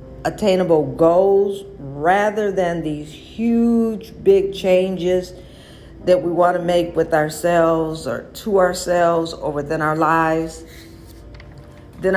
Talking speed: 115 wpm